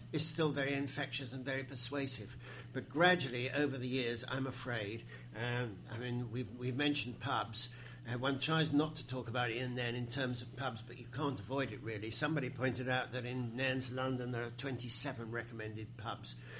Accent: British